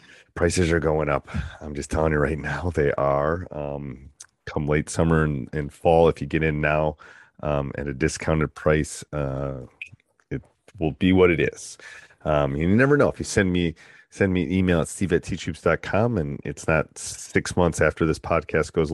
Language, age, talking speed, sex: English, 30-49, 195 wpm, male